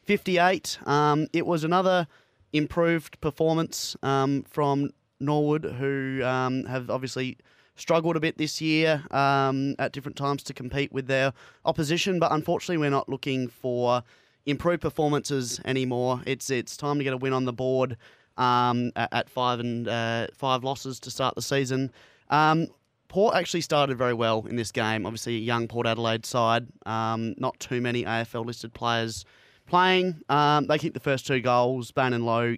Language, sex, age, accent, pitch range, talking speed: English, male, 20-39, Australian, 115-140 Hz, 165 wpm